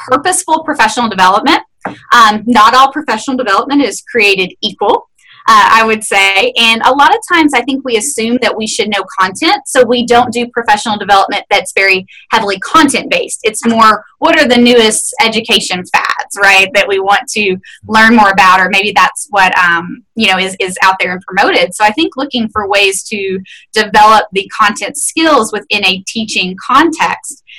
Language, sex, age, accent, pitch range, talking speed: English, female, 10-29, American, 200-275 Hz, 180 wpm